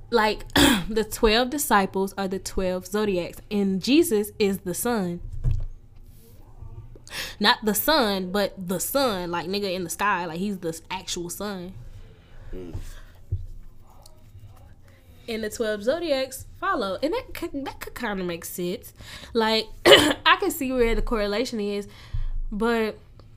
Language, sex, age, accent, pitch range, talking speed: English, female, 10-29, American, 165-245 Hz, 135 wpm